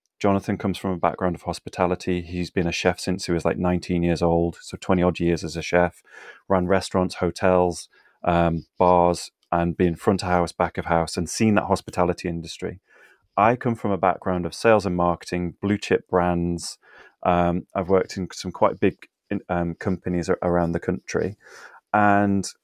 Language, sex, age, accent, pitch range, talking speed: English, male, 30-49, British, 85-100 Hz, 185 wpm